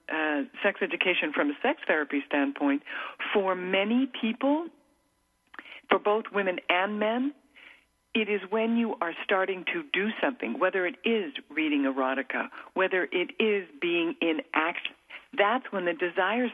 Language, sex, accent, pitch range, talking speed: English, female, American, 165-255 Hz, 145 wpm